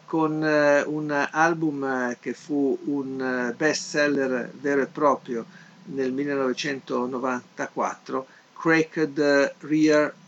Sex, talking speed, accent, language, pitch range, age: male, 90 wpm, native, Italian, 135-160 Hz, 50-69